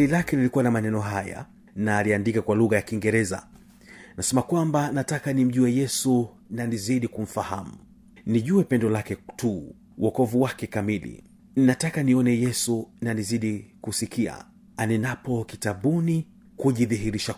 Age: 40-59